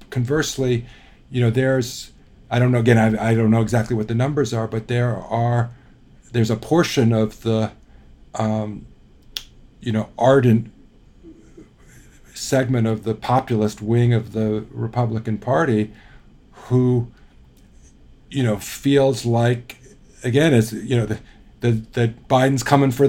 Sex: male